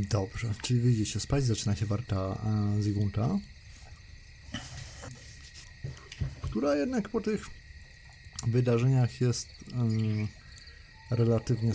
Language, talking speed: Polish, 80 wpm